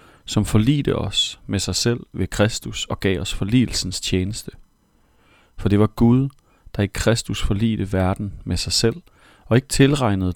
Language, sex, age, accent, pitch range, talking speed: Danish, male, 40-59, native, 95-120 Hz, 160 wpm